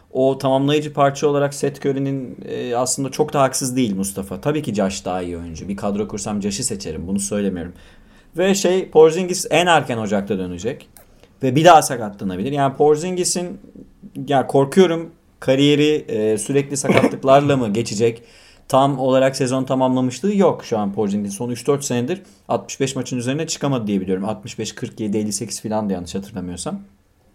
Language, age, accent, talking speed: Turkish, 30-49, native, 155 wpm